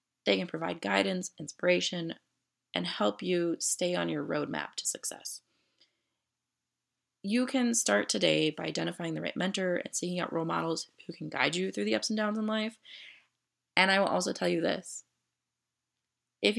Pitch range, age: 160-250 Hz, 20-39